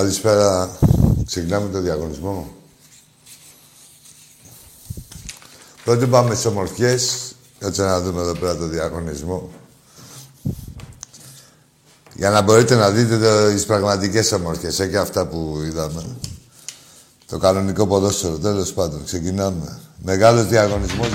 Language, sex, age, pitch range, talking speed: Greek, male, 60-79, 95-120 Hz, 110 wpm